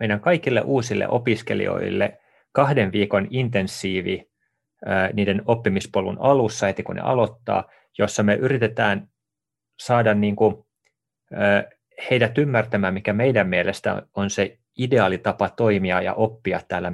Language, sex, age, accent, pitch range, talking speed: Finnish, male, 30-49, native, 95-110 Hz, 115 wpm